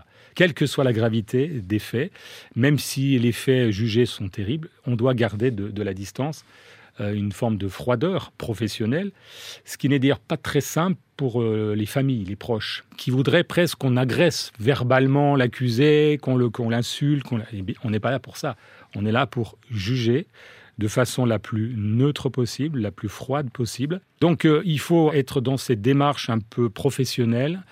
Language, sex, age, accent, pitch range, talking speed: French, male, 40-59, French, 105-135 Hz, 175 wpm